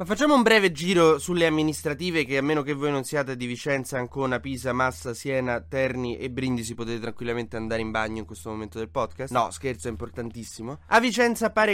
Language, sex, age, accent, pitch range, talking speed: Italian, male, 20-39, native, 125-170 Hz, 205 wpm